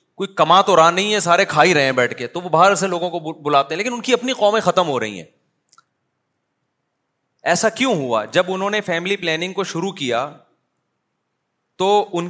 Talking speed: 210 wpm